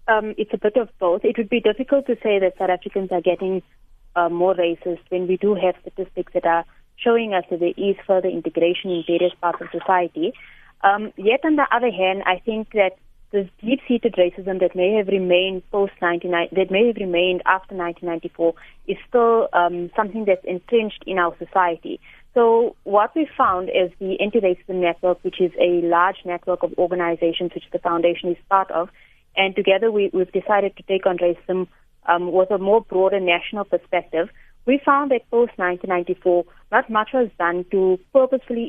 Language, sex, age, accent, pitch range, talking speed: English, female, 20-39, Indian, 175-205 Hz, 185 wpm